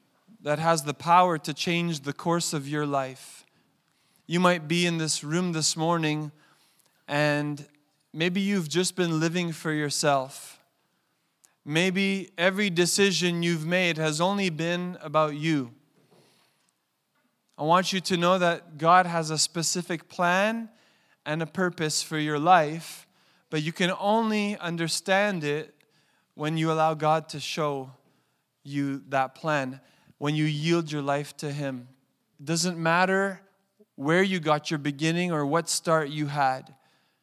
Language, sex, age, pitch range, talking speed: English, male, 20-39, 150-175 Hz, 145 wpm